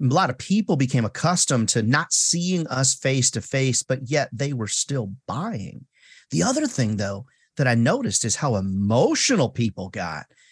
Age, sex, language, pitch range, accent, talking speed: 40-59, male, English, 125-190 Hz, American, 175 wpm